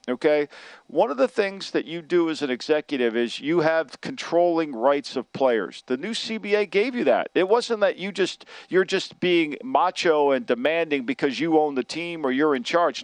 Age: 50-69